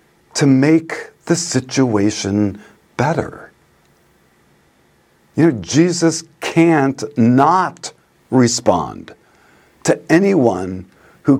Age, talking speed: 50-69, 75 wpm